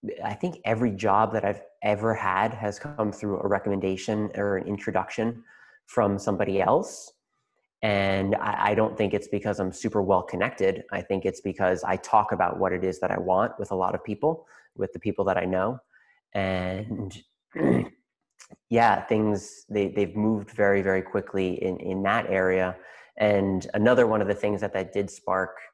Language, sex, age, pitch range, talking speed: English, male, 20-39, 95-105 Hz, 175 wpm